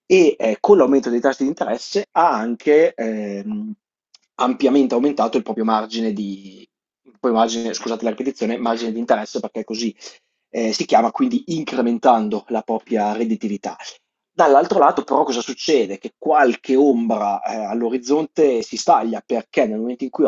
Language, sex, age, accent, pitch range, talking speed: Italian, male, 30-49, native, 105-135 Hz, 135 wpm